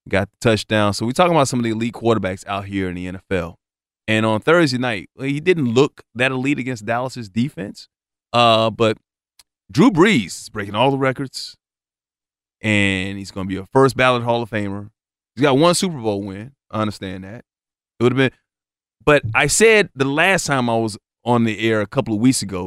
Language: English